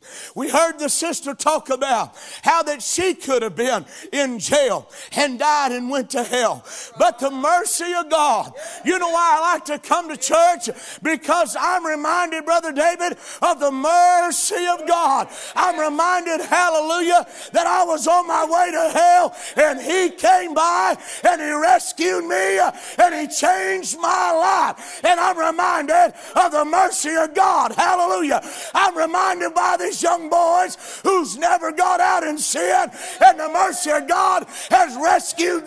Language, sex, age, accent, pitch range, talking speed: English, male, 50-69, American, 280-355 Hz, 160 wpm